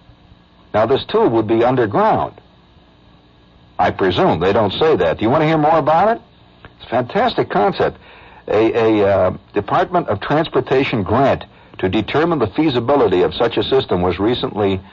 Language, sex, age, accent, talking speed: English, male, 60-79, American, 165 wpm